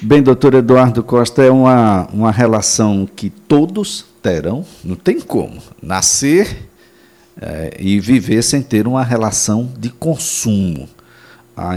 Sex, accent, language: male, Brazilian, Portuguese